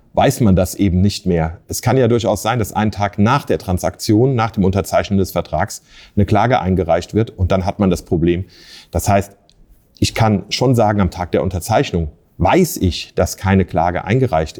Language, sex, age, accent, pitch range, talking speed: German, male, 40-59, German, 95-115 Hz, 195 wpm